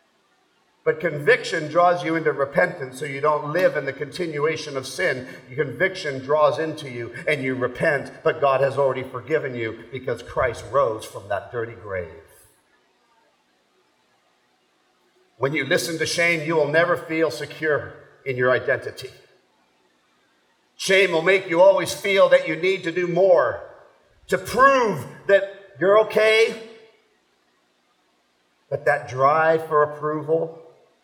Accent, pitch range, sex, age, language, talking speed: American, 125-175 Hz, male, 50-69, English, 135 wpm